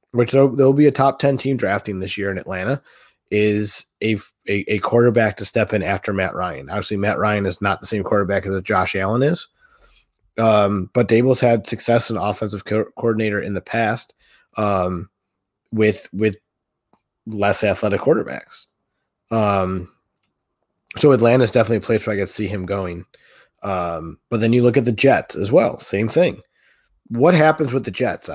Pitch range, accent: 100-125 Hz, American